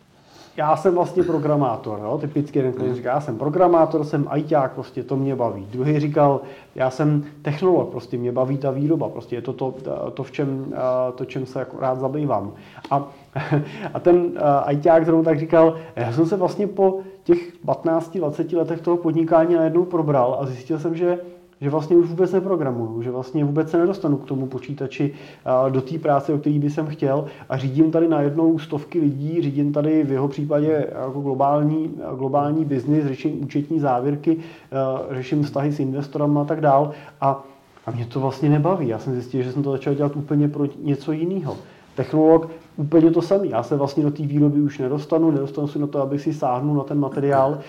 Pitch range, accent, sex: 135-160 Hz, native, male